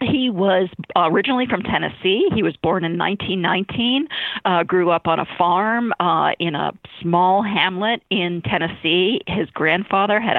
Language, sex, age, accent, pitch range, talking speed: English, female, 50-69, American, 170-210 Hz, 150 wpm